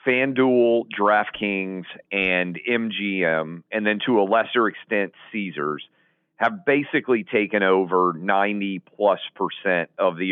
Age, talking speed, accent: 50-69, 110 wpm, American